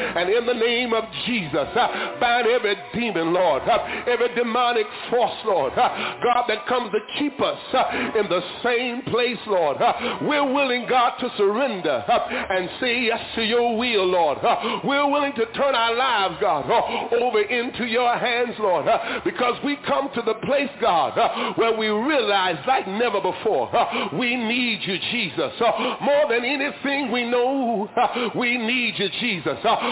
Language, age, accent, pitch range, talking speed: English, 50-69, American, 225-260 Hz, 180 wpm